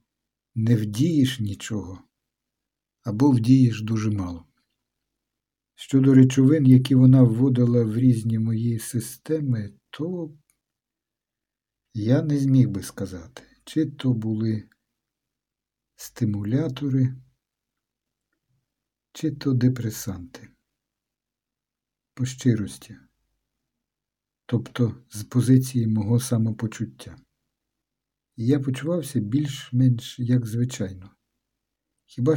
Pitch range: 115-135 Hz